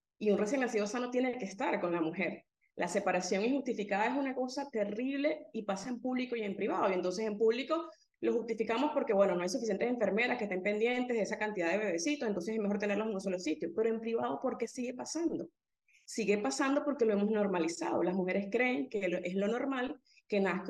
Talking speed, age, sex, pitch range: 215 wpm, 30-49, female, 195-270 Hz